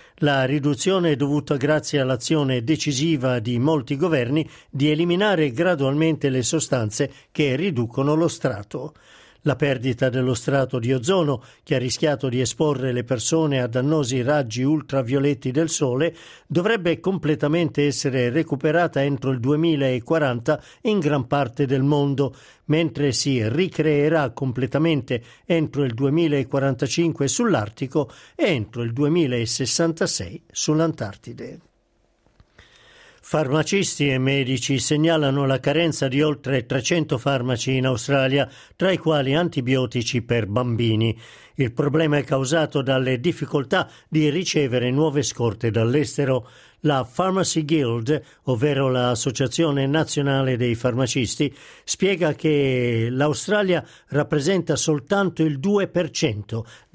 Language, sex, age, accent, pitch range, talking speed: Italian, male, 50-69, native, 130-160 Hz, 115 wpm